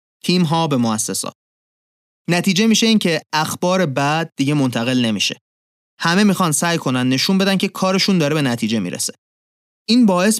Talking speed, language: 155 wpm, Persian